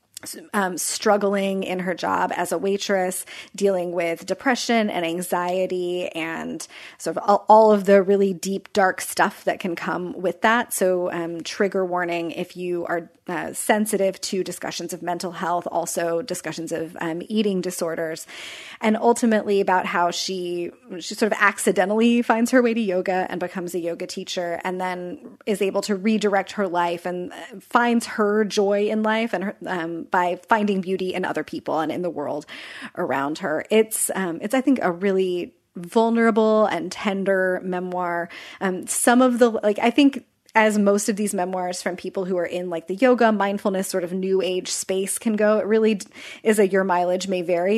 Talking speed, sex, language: 180 wpm, female, English